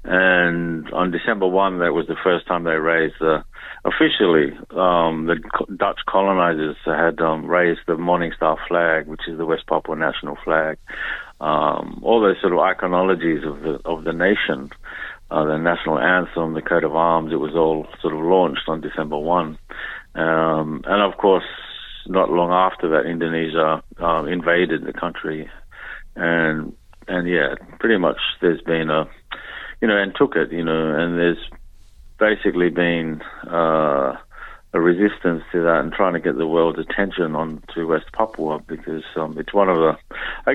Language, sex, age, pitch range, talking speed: English, male, 50-69, 80-90 Hz, 175 wpm